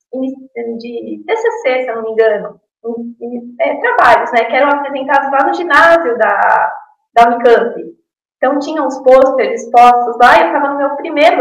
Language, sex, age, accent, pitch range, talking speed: Portuguese, female, 20-39, Brazilian, 240-335 Hz, 170 wpm